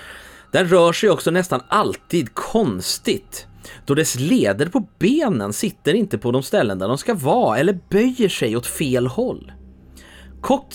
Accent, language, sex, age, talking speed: Swedish, English, male, 30-49, 155 wpm